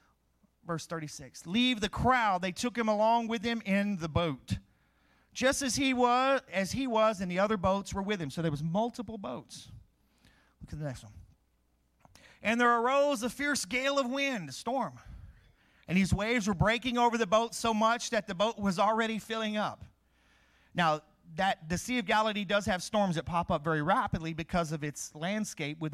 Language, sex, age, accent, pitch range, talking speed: English, male, 40-59, American, 150-200 Hz, 195 wpm